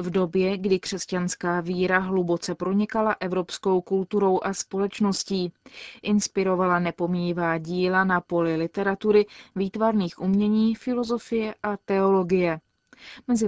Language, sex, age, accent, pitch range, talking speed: Czech, female, 20-39, native, 180-215 Hz, 100 wpm